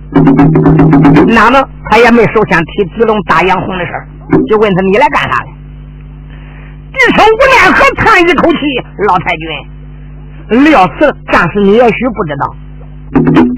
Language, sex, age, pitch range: Chinese, male, 50-69, 145-245 Hz